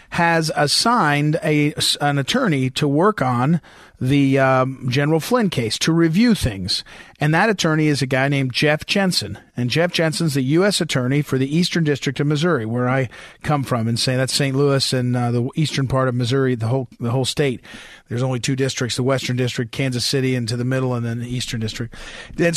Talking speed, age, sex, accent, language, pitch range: 200 wpm, 40-59, male, American, English, 130-165 Hz